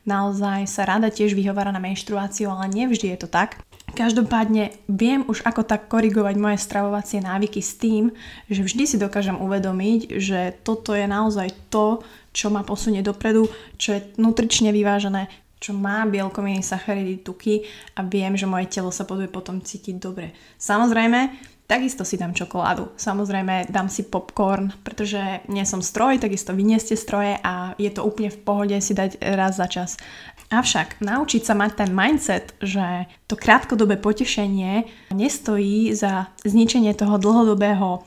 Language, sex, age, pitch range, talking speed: Slovak, female, 20-39, 195-220 Hz, 155 wpm